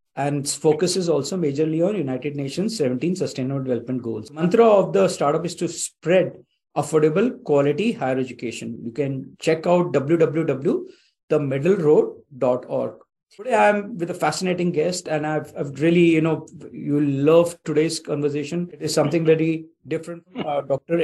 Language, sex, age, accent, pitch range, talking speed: English, male, 50-69, Indian, 150-190 Hz, 150 wpm